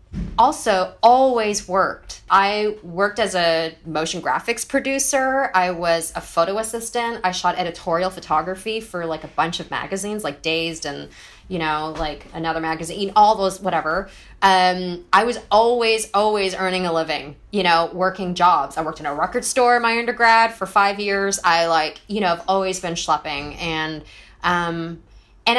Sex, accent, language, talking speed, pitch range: female, American, English, 165 wpm, 155-205 Hz